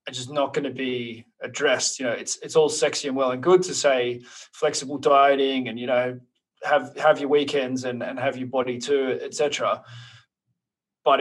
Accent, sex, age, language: Australian, male, 20-39, English